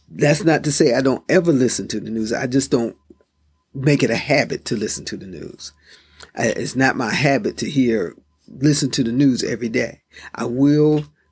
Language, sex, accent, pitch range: English, male, American, 120-150 Hz